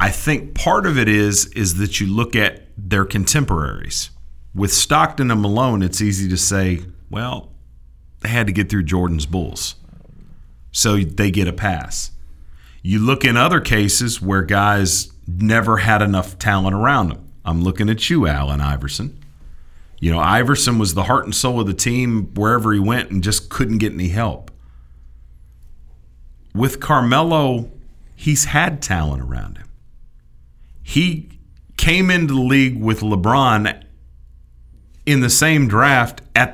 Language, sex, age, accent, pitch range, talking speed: English, male, 40-59, American, 75-120 Hz, 150 wpm